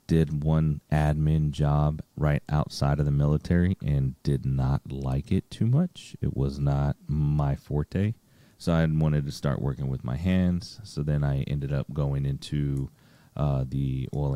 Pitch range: 70-85 Hz